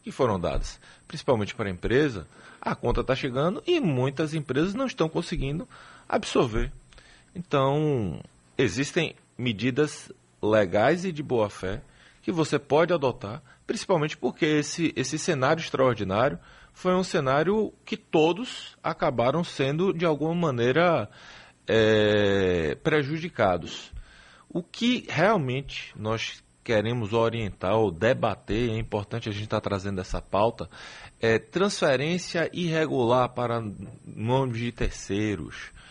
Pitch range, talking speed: 115-165 Hz, 115 wpm